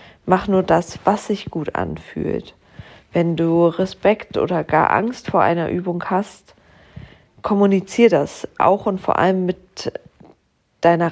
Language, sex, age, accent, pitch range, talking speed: German, female, 40-59, German, 170-195 Hz, 135 wpm